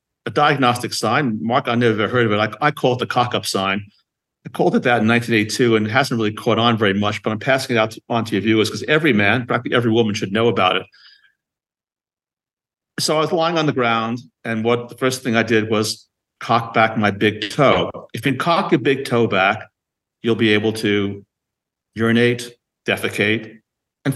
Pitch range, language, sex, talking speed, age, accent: 105-120 Hz, English, male, 210 wpm, 50-69, American